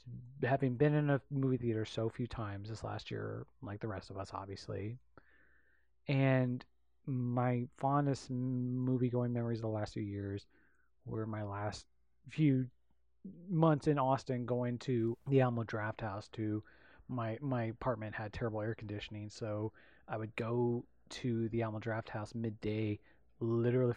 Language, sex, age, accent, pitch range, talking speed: English, male, 30-49, American, 105-125 Hz, 155 wpm